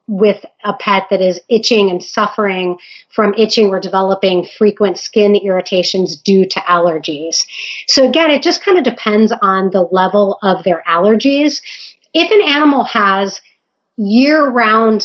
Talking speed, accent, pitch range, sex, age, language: 145 wpm, American, 190-220 Hz, female, 30-49, English